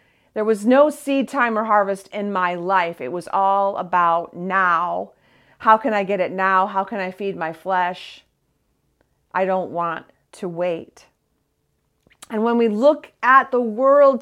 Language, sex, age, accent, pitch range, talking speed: English, female, 40-59, American, 200-260 Hz, 165 wpm